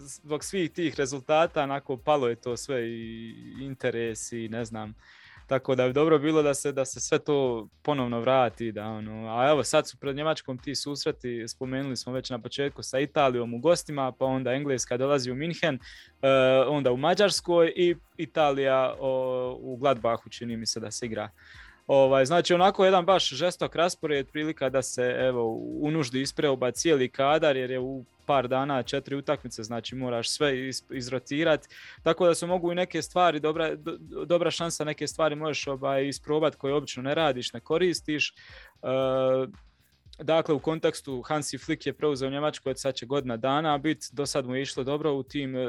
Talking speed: 180 wpm